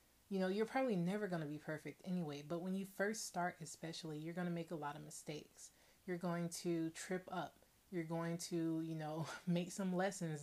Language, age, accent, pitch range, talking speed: English, 30-49, American, 165-190 Hz, 215 wpm